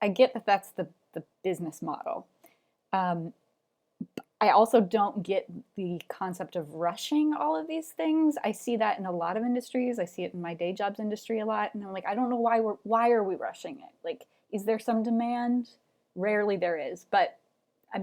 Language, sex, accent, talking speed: English, female, American, 205 wpm